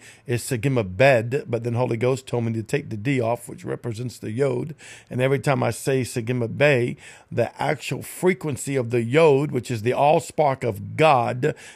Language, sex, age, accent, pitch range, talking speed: English, male, 50-69, American, 125-160 Hz, 185 wpm